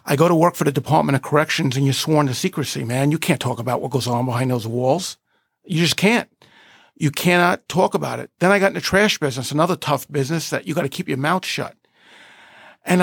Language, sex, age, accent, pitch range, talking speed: English, male, 50-69, American, 140-180 Hz, 240 wpm